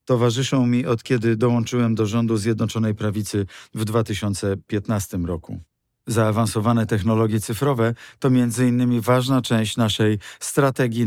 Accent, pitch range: native, 110-125 Hz